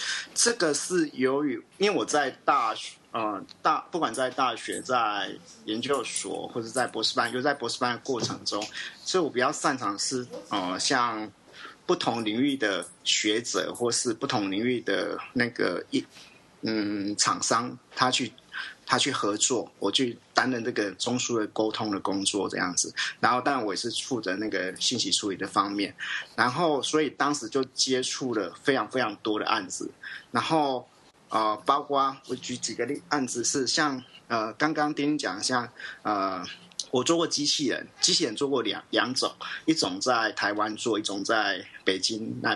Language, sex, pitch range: Chinese, male, 115-145 Hz